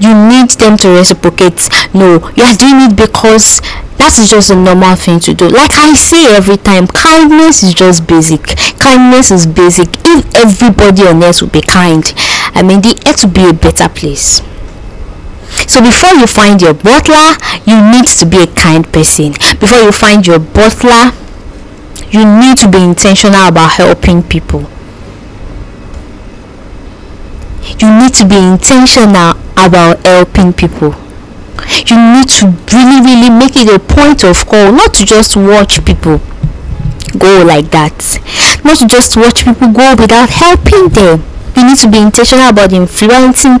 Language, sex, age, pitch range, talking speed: English, female, 10-29, 175-245 Hz, 160 wpm